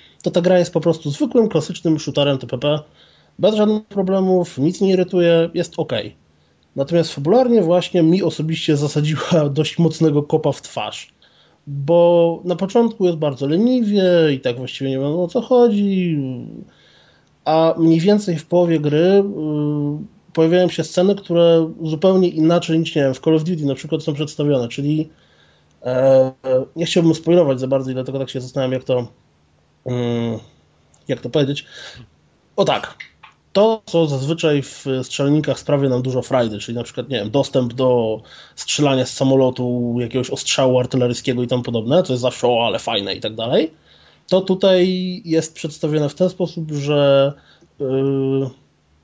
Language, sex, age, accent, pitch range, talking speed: Polish, male, 20-39, native, 130-170 Hz, 155 wpm